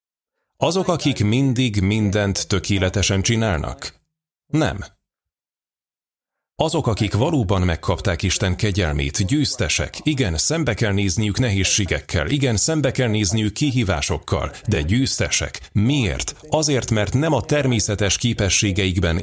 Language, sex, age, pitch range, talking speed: Hungarian, male, 30-49, 95-125 Hz, 105 wpm